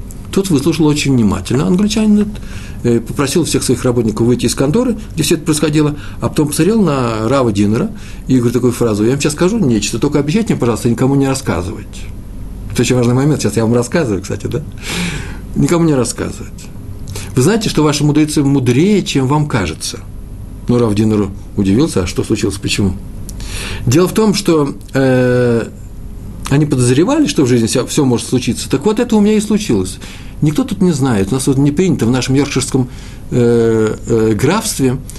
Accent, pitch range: native, 105-155 Hz